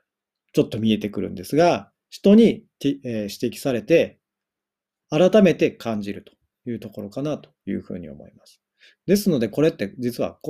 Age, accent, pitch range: 40-59, native, 110-160 Hz